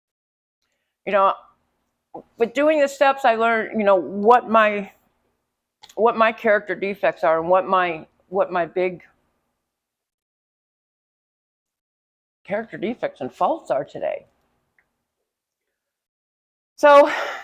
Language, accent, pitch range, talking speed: English, American, 180-230 Hz, 105 wpm